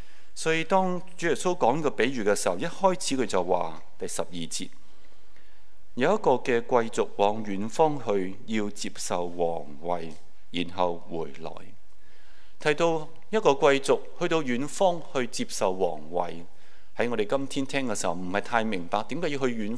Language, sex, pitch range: Chinese, male, 90-150 Hz